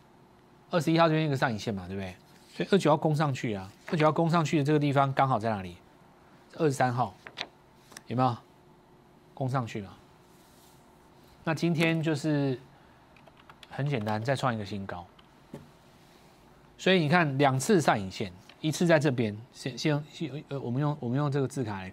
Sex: male